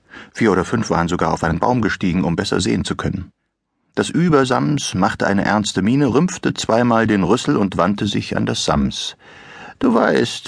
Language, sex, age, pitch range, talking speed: German, male, 60-79, 125-170 Hz, 185 wpm